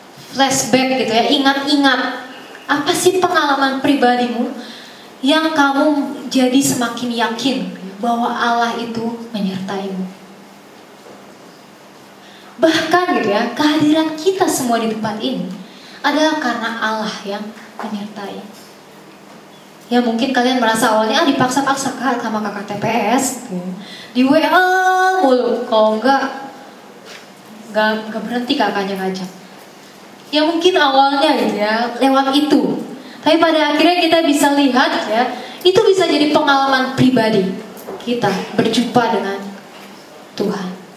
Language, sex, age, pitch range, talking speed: Indonesian, female, 20-39, 220-295 Hz, 105 wpm